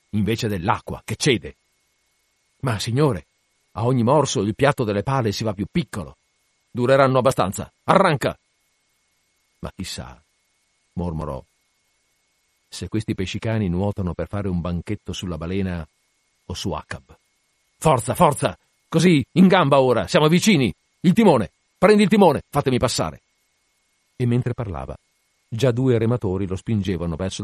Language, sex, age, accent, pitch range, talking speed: Italian, male, 50-69, native, 90-125 Hz, 130 wpm